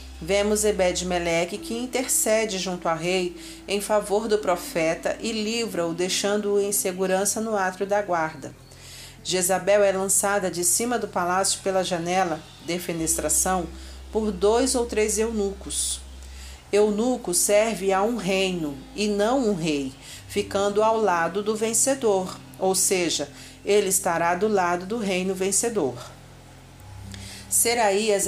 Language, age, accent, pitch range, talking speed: Portuguese, 40-59, Brazilian, 175-210 Hz, 125 wpm